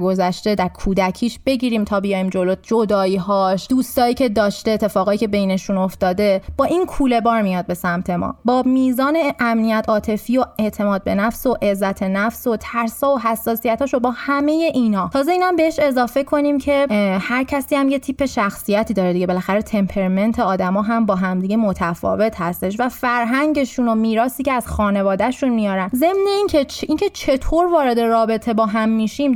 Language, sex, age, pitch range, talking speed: Persian, female, 20-39, 200-275 Hz, 170 wpm